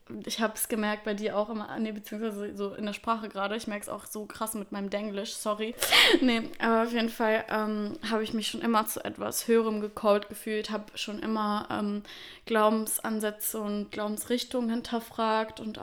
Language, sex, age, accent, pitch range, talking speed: German, female, 20-39, German, 210-235 Hz, 190 wpm